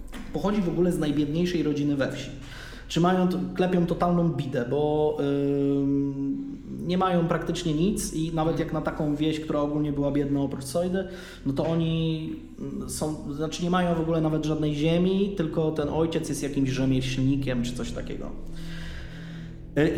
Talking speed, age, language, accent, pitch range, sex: 160 wpm, 20-39, Polish, native, 135-160 Hz, male